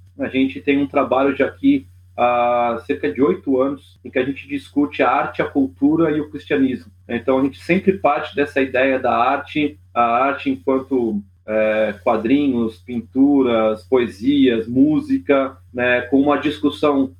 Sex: male